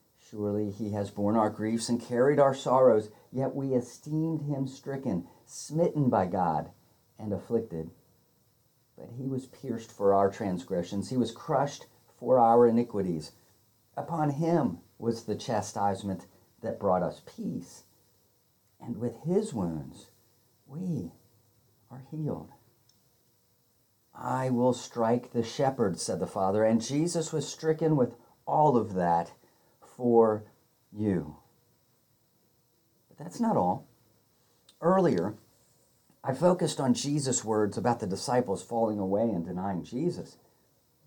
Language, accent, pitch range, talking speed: English, American, 110-145 Hz, 125 wpm